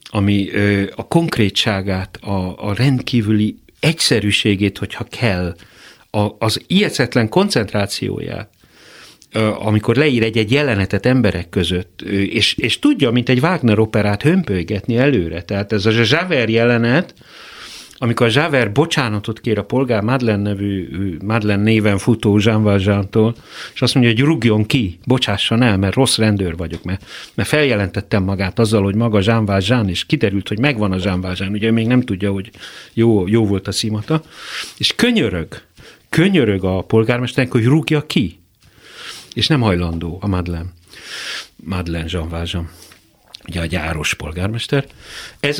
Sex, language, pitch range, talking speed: male, Hungarian, 100-125 Hz, 135 wpm